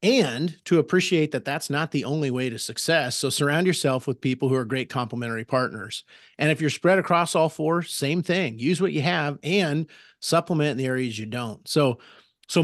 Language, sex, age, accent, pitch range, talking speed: English, male, 40-59, American, 130-160 Hz, 205 wpm